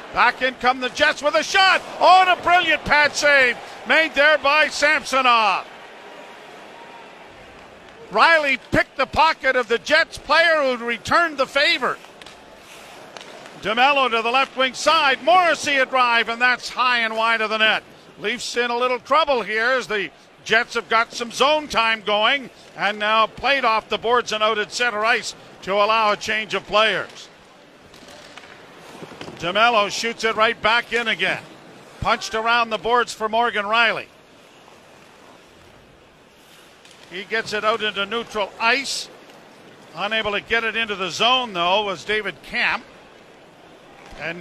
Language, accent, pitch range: English, American, 215-260 Hz